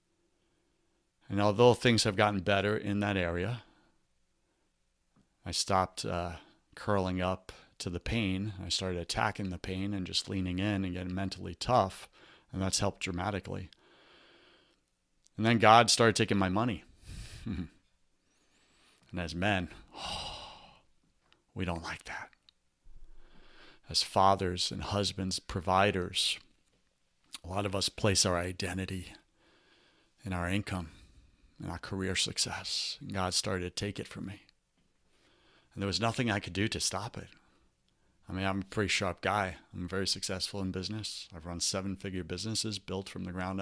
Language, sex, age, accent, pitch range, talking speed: English, male, 30-49, American, 90-105 Hz, 145 wpm